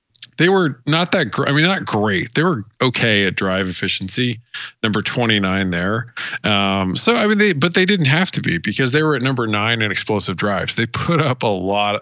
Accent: American